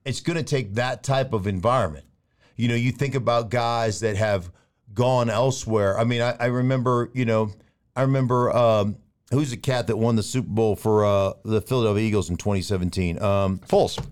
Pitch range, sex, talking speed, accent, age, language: 105-130 Hz, male, 190 wpm, American, 50-69, English